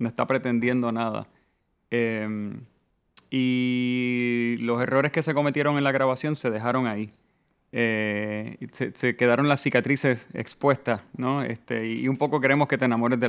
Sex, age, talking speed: male, 30-49, 155 wpm